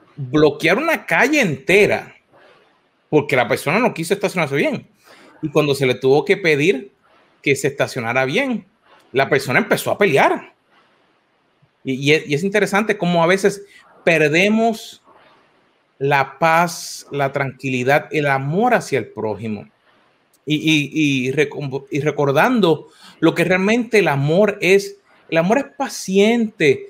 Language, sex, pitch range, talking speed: Spanish, male, 155-245 Hz, 130 wpm